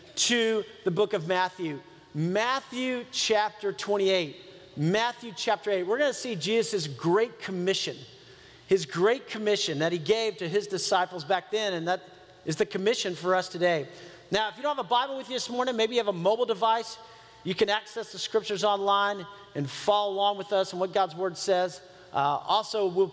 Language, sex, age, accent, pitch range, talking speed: English, male, 40-59, American, 180-225 Hz, 190 wpm